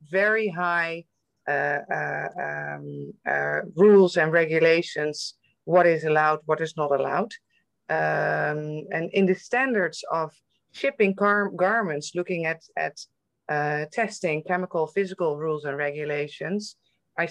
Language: English